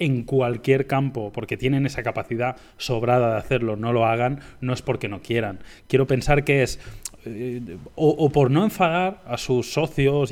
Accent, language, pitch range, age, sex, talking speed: Spanish, Spanish, 115-140 Hz, 20-39, male, 180 wpm